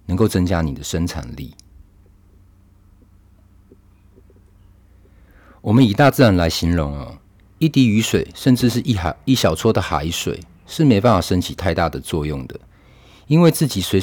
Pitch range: 85-105 Hz